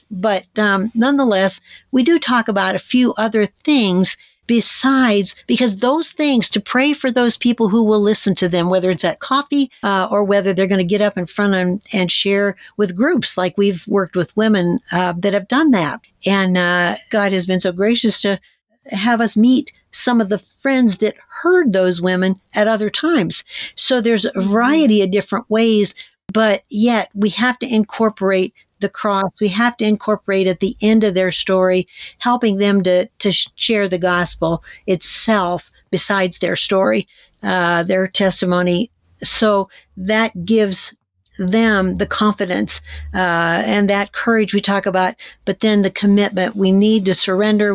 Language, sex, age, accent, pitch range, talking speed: English, female, 60-79, American, 185-225 Hz, 170 wpm